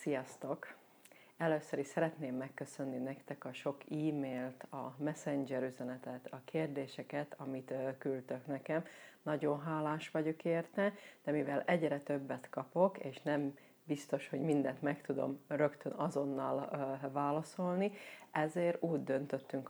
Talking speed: 120 wpm